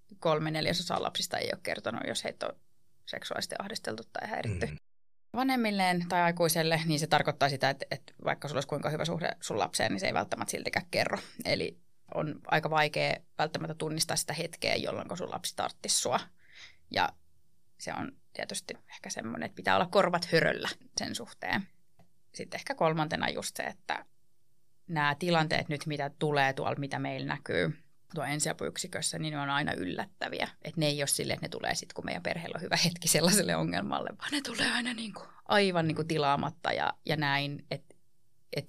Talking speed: 175 wpm